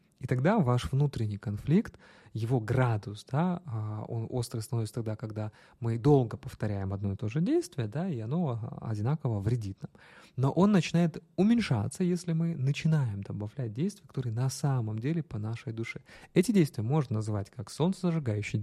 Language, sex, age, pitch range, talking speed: Russian, male, 20-39, 110-150 Hz, 160 wpm